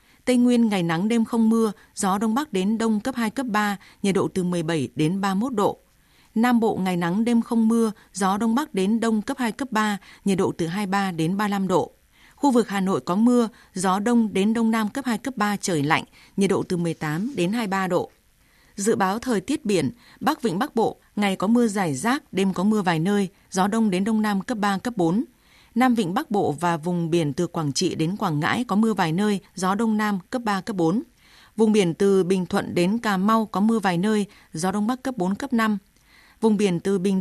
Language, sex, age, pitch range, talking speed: Vietnamese, female, 20-39, 185-230 Hz, 235 wpm